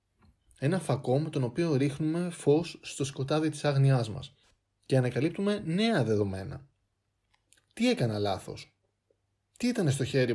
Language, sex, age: Greek, male, 20-39